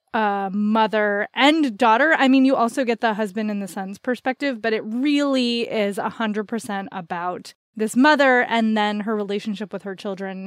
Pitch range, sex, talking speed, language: 215-265 Hz, female, 190 wpm, English